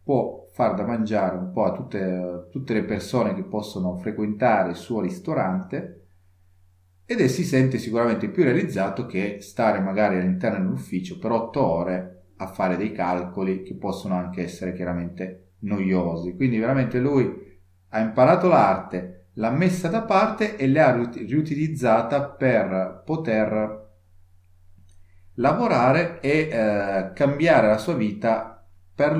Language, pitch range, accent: Italian, 95-130 Hz, native